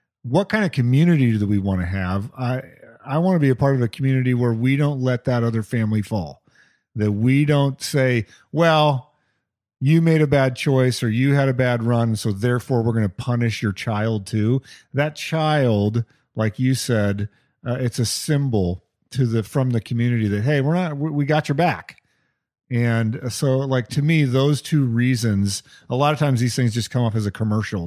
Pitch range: 105-130 Hz